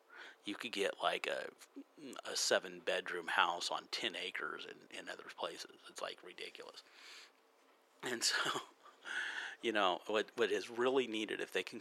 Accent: American